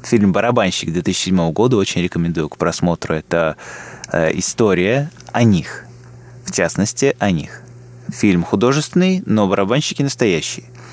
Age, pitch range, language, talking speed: 20-39, 90-120 Hz, Russian, 115 wpm